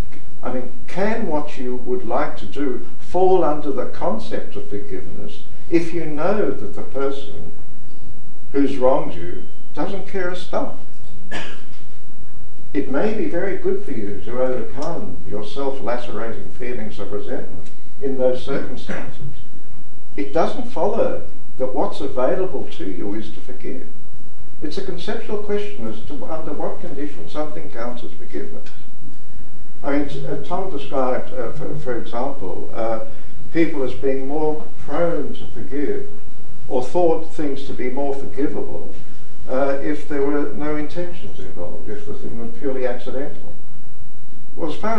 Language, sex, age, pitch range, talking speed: English, male, 60-79, 115-160 Hz, 145 wpm